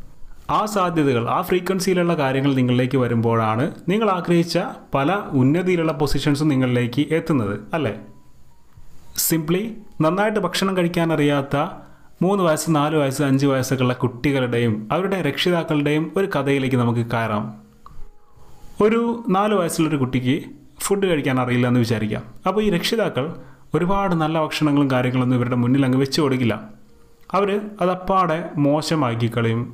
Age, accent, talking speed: 30-49, native, 115 wpm